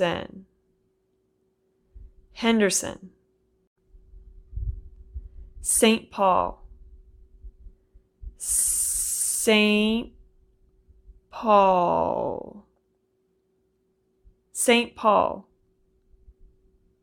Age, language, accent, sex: 20-39, English, American, female